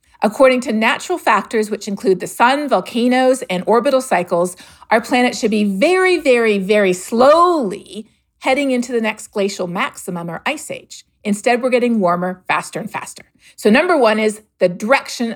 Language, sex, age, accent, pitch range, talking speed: English, female, 40-59, American, 205-275 Hz, 165 wpm